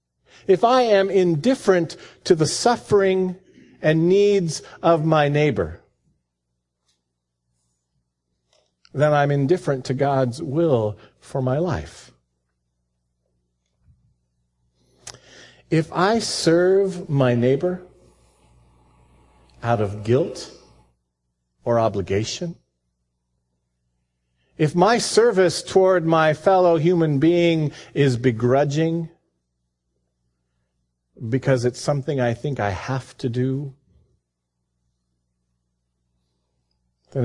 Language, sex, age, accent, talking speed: English, male, 50-69, American, 80 wpm